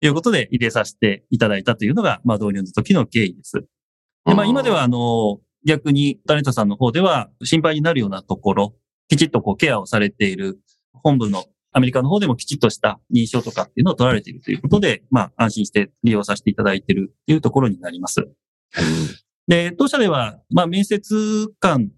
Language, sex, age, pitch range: Japanese, male, 30-49, 110-160 Hz